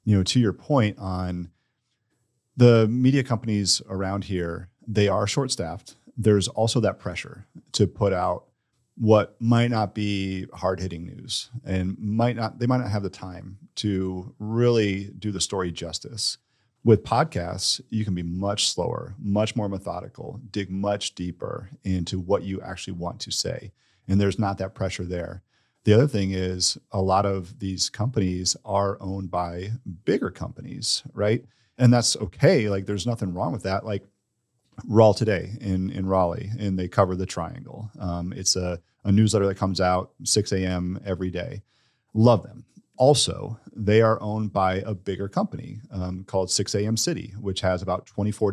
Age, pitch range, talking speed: 40-59, 95-115 Hz, 170 wpm